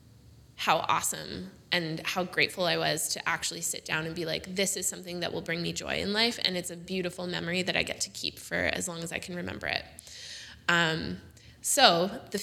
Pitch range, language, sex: 170-200 Hz, English, female